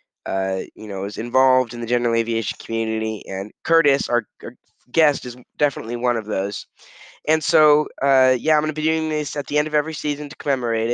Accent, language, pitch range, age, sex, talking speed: American, English, 120-145 Hz, 10-29, male, 210 wpm